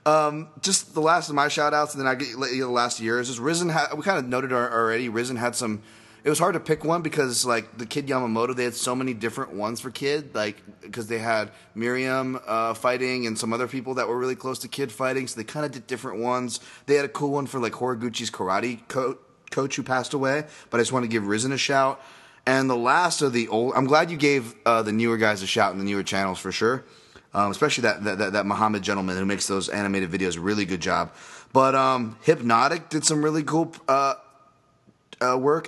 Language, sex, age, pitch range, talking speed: English, male, 30-49, 110-135 Hz, 240 wpm